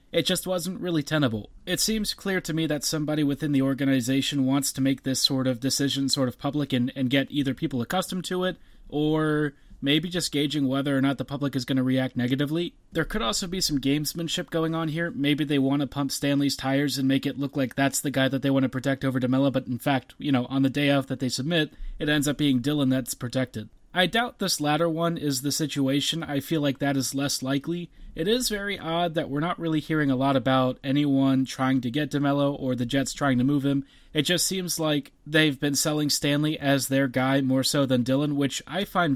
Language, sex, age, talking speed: English, male, 30-49, 235 wpm